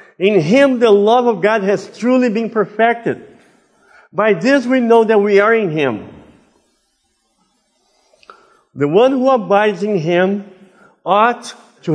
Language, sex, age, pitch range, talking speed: English, male, 50-69, 150-215 Hz, 135 wpm